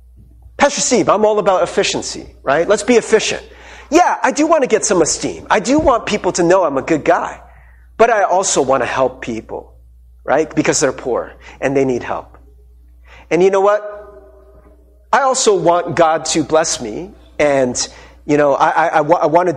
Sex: male